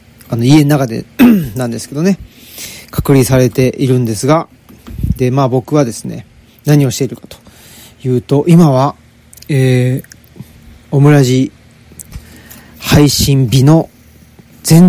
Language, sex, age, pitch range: Japanese, male, 40-59, 120-160 Hz